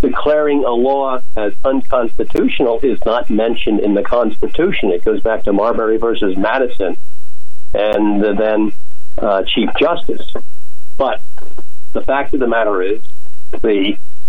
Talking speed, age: 130 wpm, 50-69